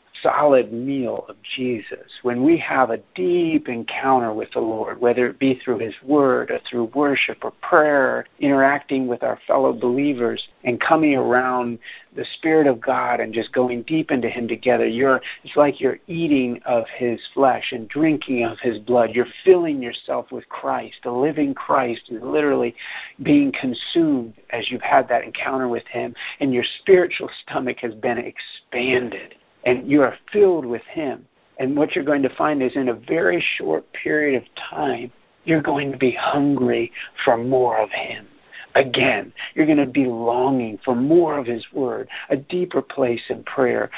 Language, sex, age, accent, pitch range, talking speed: English, male, 50-69, American, 120-150 Hz, 175 wpm